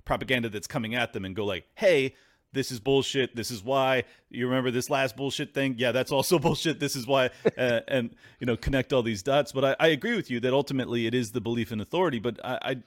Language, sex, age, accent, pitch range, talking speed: English, male, 30-49, American, 100-130 Hz, 240 wpm